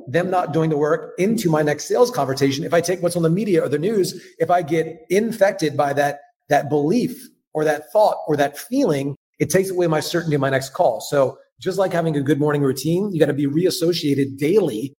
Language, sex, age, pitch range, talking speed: English, male, 30-49, 145-185 Hz, 230 wpm